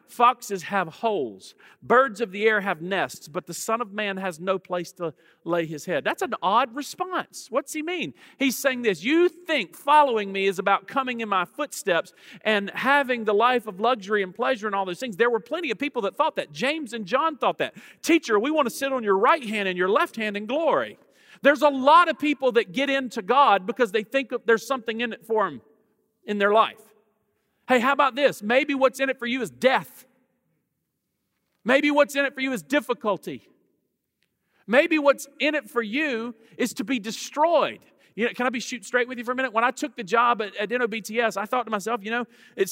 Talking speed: 220 wpm